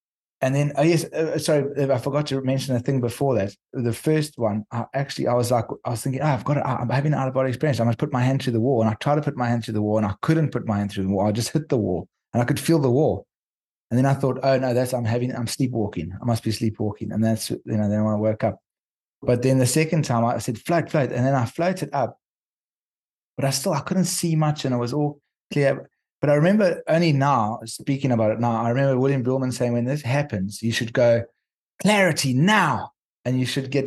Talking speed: 260 wpm